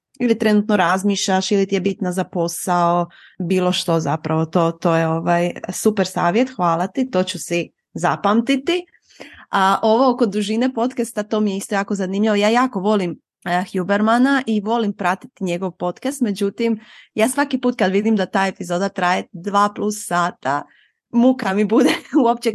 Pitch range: 185-235 Hz